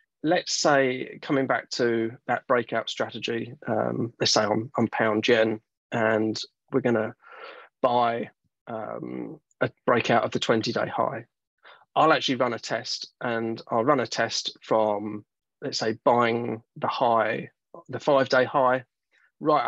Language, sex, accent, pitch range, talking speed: English, male, British, 115-140 Hz, 145 wpm